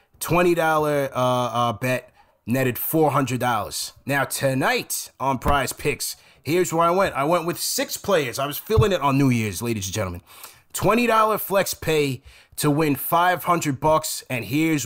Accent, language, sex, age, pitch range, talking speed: American, English, male, 20-39, 125-145 Hz, 160 wpm